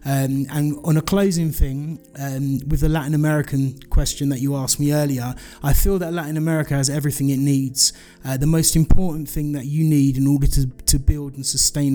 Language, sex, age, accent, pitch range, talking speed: Spanish, male, 30-49, British, 135-160 Hz, 205 wpm